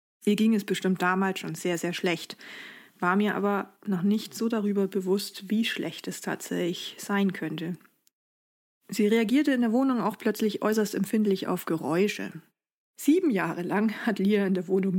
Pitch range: 175-210 Hz